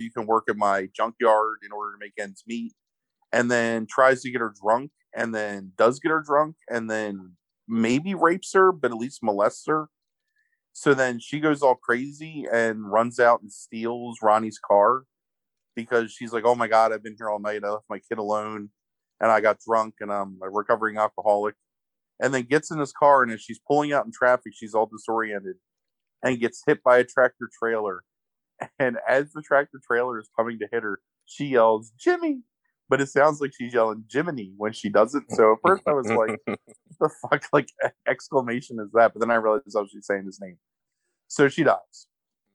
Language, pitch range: English, 105-140 Hz